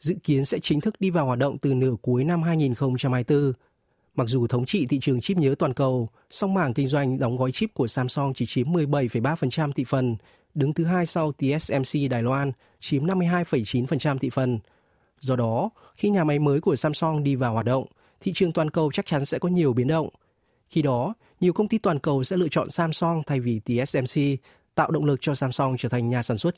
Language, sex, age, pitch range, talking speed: Vietnamese, male, 20-39, 130-165 Hz, 215 wpm